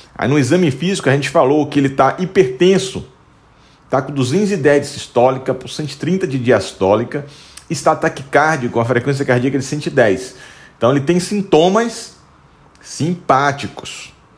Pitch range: 120-155 Hz